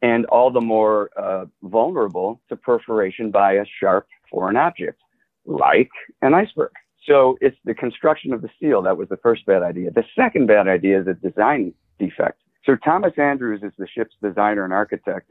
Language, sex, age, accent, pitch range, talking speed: English, male, 50-69, American, 100-125 Hz, 180 wpm